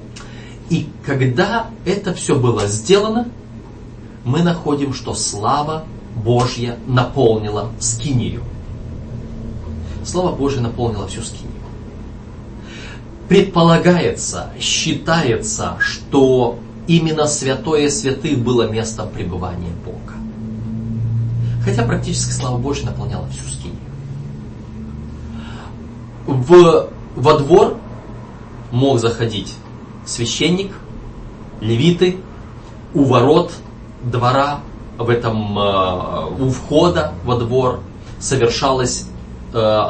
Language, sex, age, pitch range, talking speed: Russian, male, 30-49, 110-130 Hz, 80 wpm